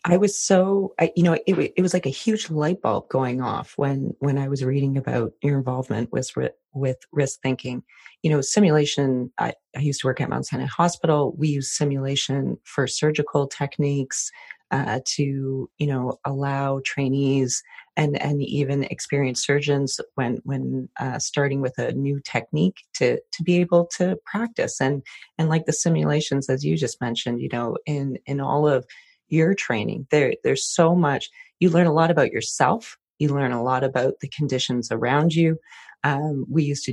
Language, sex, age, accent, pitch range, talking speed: English, female, 30-49, American, 135-170 Hz, 180 wpm